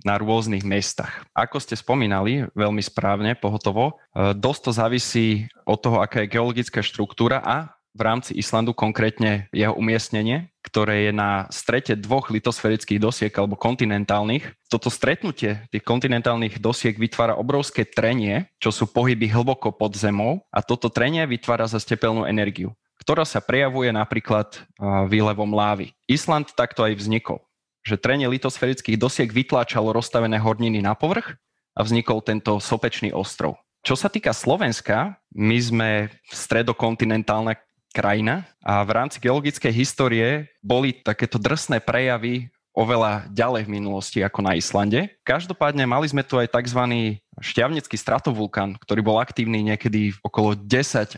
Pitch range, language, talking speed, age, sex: 105-125 Hz, Slovak, 135 wpm, 20-39, male